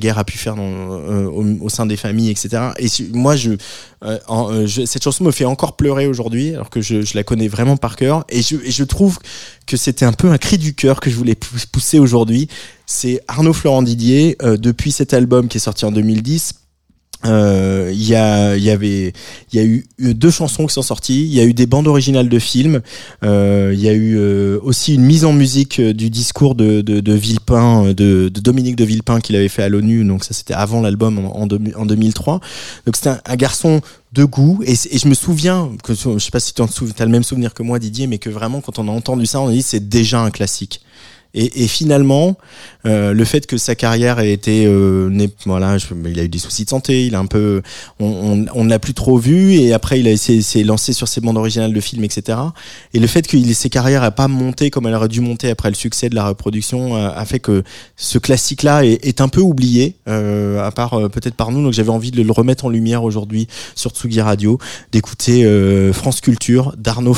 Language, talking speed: French, 245 wpm